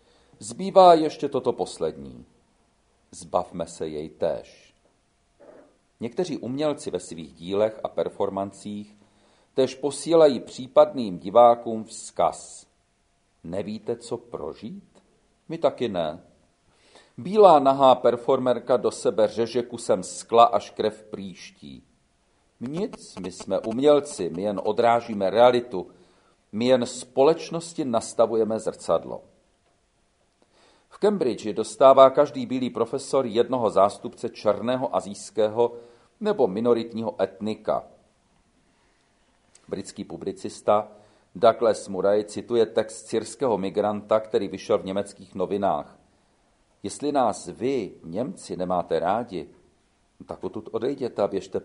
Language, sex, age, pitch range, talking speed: Czech, male, 40-59, 100-130 Hz, 100 wpm